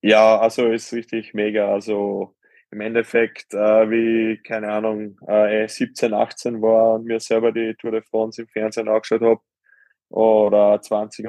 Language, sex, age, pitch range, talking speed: German, male, 20-39, 105-120 Hz, 160 wpm